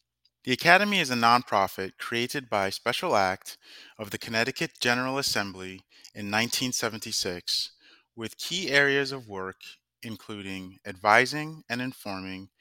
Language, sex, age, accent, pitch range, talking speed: English, male, 30-49, American, 100-140 Hz, 120 wpm